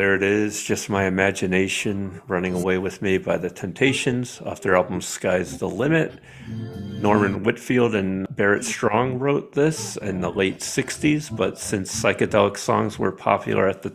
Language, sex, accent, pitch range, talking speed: English, male, American, 95-115 Hz, 165 wpm